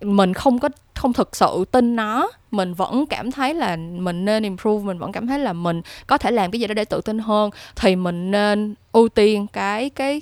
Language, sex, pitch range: Vietnamese, female, 185-250 Hz